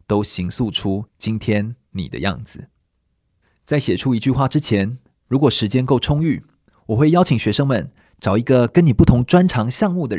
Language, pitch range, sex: Chinese, 105-135 Hz, male